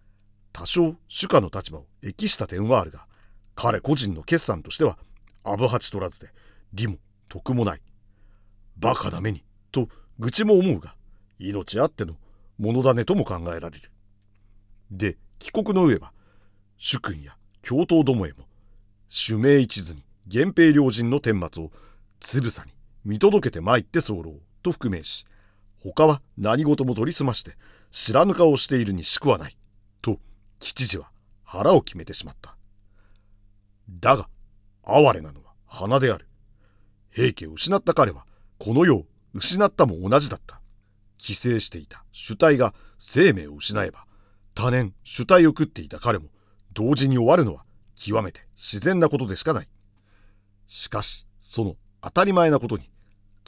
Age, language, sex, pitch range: 50-69, Japanese, male, 100-125 Hz